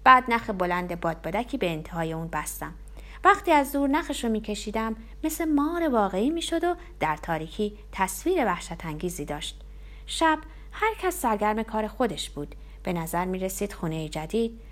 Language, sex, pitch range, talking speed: Persian, female, 175-285 Hz, 150 wpm